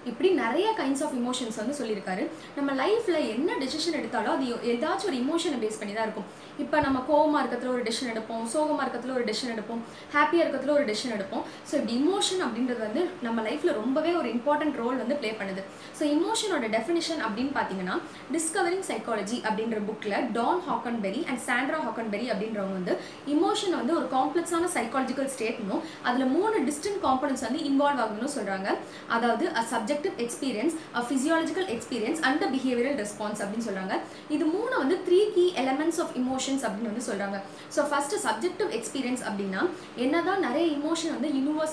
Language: Tamil